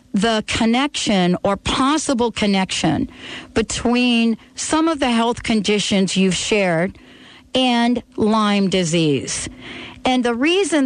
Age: 50-69